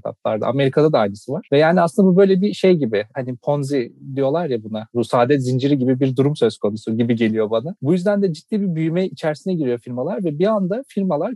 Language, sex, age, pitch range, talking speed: Turkish, male, 40-59, 130-175 Hz, 215 wpm